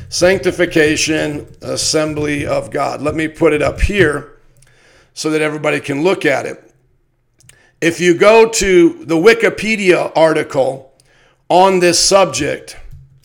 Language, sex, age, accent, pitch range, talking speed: English, male, 50-69, American, 135-185 Hz, 120 wpm